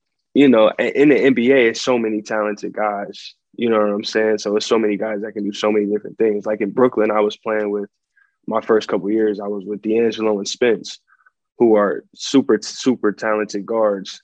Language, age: English, 20-39